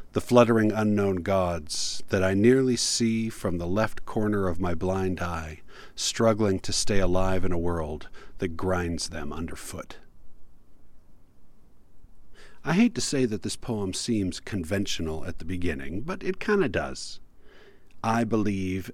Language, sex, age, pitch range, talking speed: English, male, 40-59, 90-120 Hz, 145 wpm